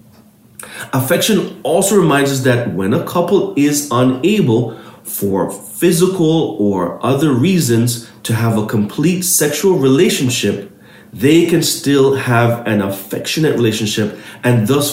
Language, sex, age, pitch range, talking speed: English, male, 40-59, 100-130 Hz, 120 wpm